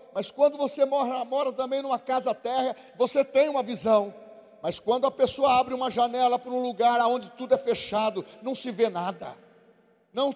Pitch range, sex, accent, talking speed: 230-275 Hz, male, Brazilian, 185 wpm